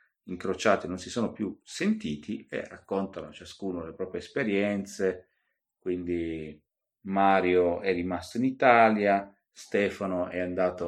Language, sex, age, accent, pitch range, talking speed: Italian, male, 30-49, native, 90-110 Hz, 115 wpm